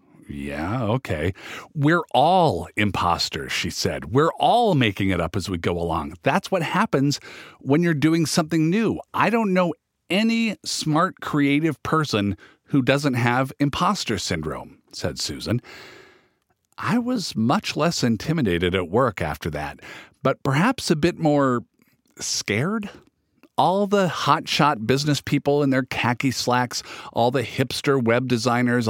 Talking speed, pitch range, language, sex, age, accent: 140 wpm, 120-165 Hz, English, male, 50-69, American